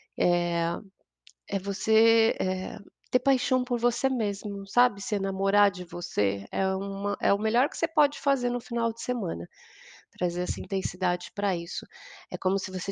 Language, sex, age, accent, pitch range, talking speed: Portuguese, female, 30-49, Brazilian, 185-215 Hz, 165 wpm